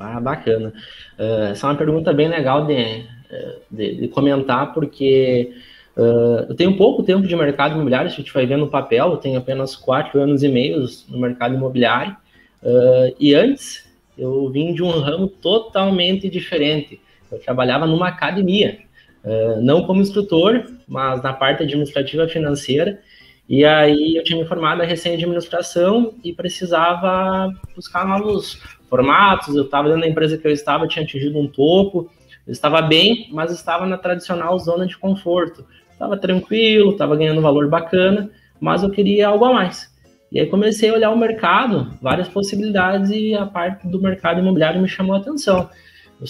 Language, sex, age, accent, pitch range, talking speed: Portuguese, male, 20-39, Brazilian, 140-185 Hz, 165 wpm